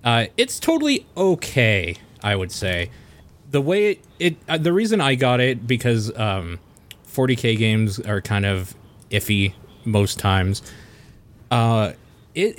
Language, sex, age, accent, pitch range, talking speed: English, male, 30-49, American, 105-130 Hz, 140 wpm